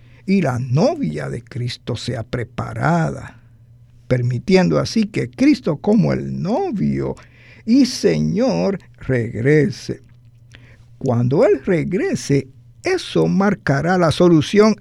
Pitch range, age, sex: 120-200 Hz, 50-69, male